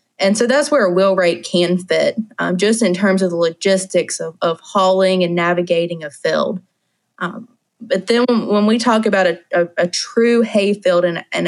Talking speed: 205 wpm